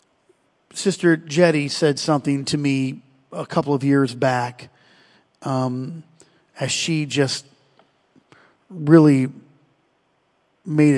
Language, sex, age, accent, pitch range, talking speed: English, male, 40-59, American, 135-155 Hz, 95 wpm